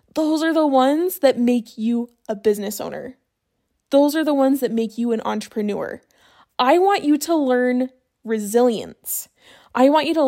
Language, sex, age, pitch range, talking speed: English, female, 10-29, 235-295 Hz, 170 wpm